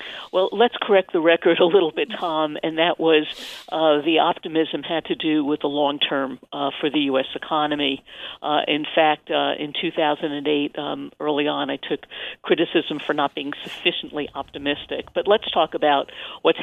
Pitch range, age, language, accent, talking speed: 145-170 Hz, 50-69, English, American, 175 wpm